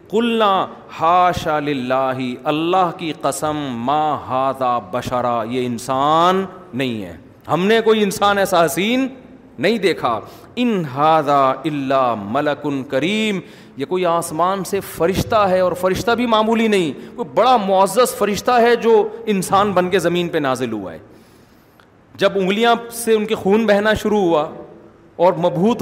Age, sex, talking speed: 40-59, male, 140 wpm